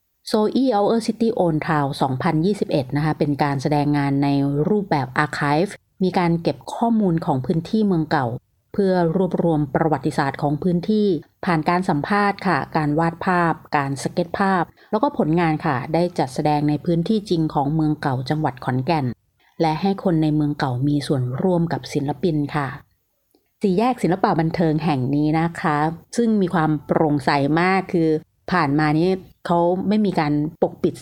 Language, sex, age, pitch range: Thai, female, 30-49, 145-180 Hz